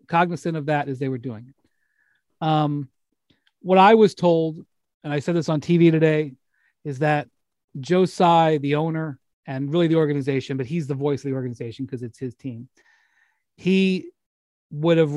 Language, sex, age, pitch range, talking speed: English, male, 30-49, 135-175 Hz, 175 wpm